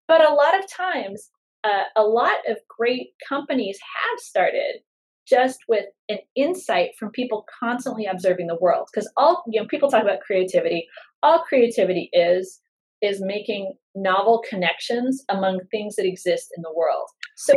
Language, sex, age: English, female, 30-49